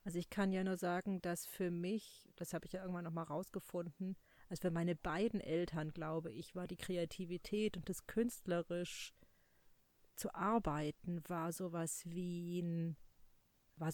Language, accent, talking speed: German, German, 155 wpm